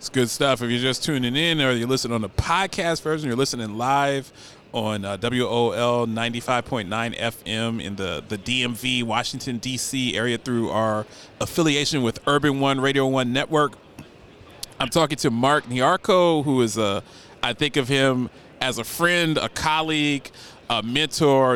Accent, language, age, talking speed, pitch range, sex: American, English, 40-59, 160 wpm, 120-150 Hz, male